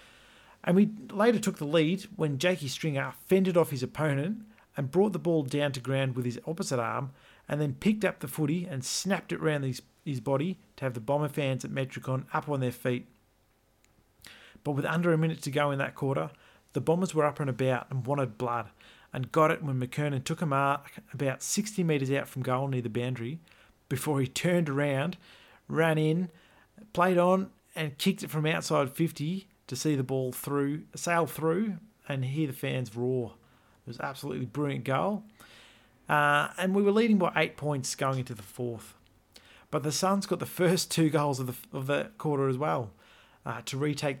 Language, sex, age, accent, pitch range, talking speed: English, male, 40-59, Australian, 130-160 Hz, 200 wpm